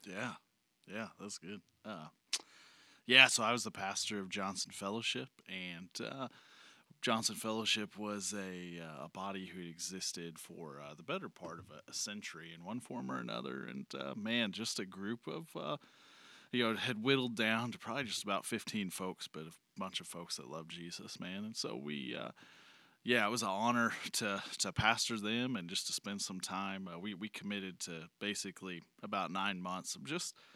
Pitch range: 95-115 Hz